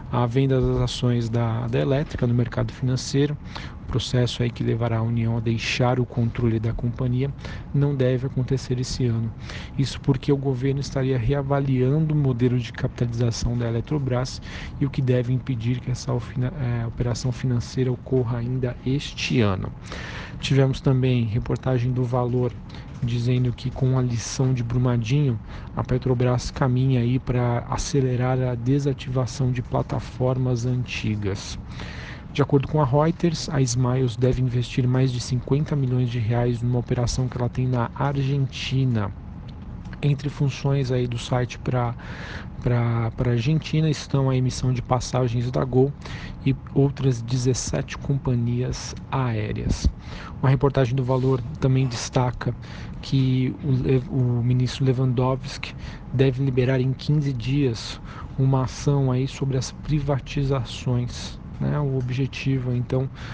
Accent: Brazilian